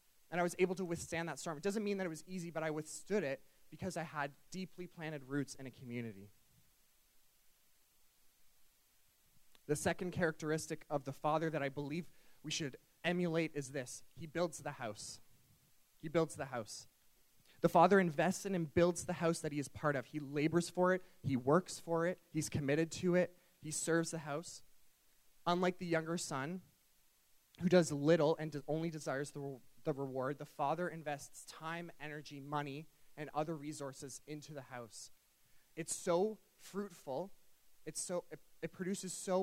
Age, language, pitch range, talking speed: 20-39, English, 145-175 Hz, 175 wpm